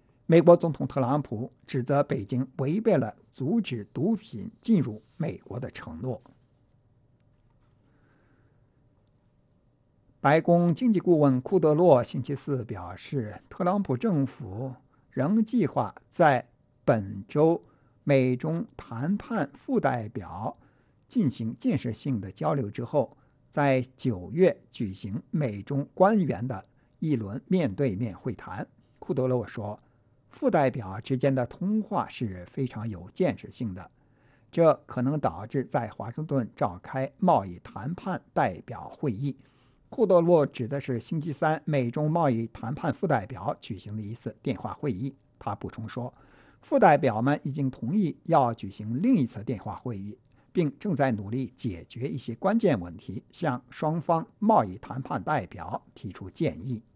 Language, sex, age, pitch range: English, male, 60-79, 120-150 Hz